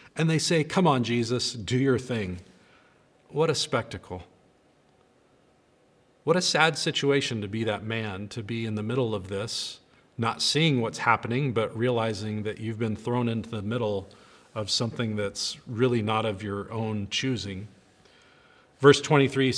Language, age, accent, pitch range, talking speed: English, 40-59, American, 110-140 Hz, 155 wpm